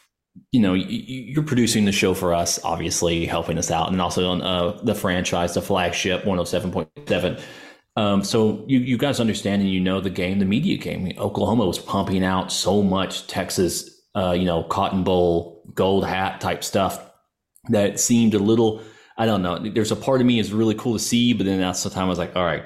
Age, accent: 30-49, American